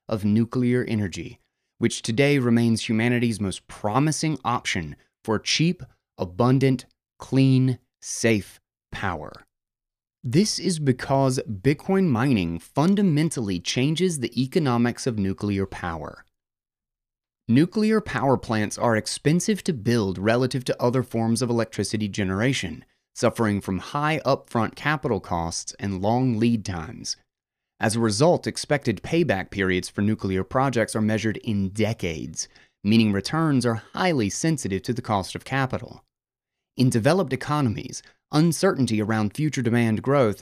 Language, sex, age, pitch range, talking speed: English, male, 30-49, 105-135 Hz, 125 wpm